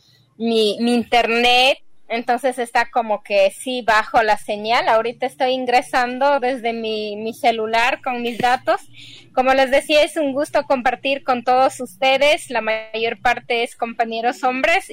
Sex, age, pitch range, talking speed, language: female, 20-39, 220-260 Hz, 150 wpm, Spanish